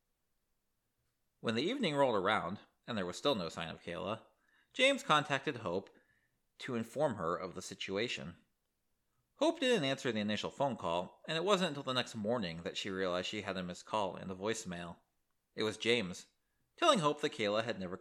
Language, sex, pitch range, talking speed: English, male, 95-155 Hz, 185 wpm